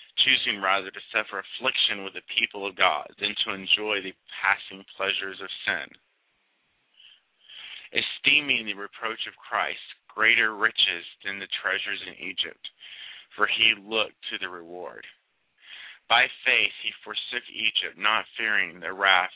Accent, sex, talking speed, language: American, male, 140 wpm, English